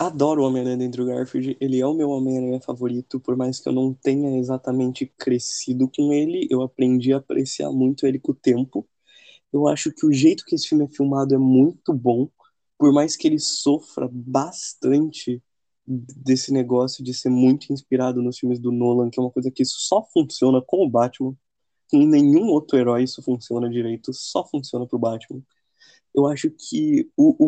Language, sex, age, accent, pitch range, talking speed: Portuguese, male, 20-39, Brazilian, 125-150 Hz, 190 wpm